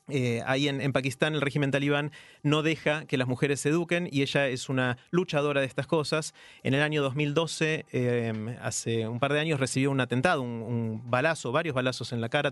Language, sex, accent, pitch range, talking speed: Spanish, male, Argentinian, 125-155 Hz, 210 wpm